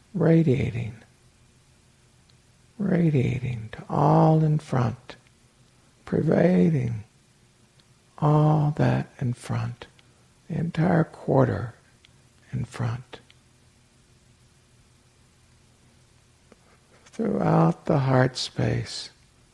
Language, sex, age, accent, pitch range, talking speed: English, male, 60-79, American, 120-155 Hz, 60 wpm